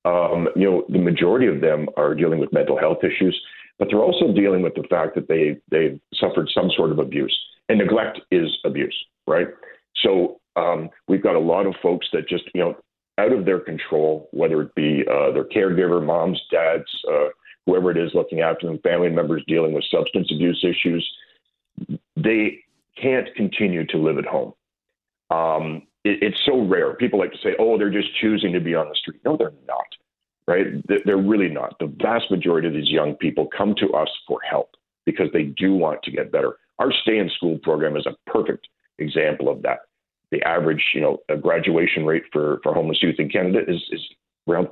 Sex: male